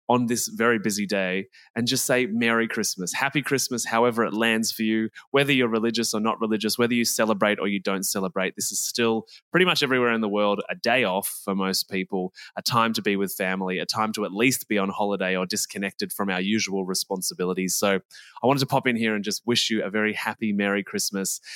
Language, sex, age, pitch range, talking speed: English, male, 20-39, 100-125 Hz, 225 wpm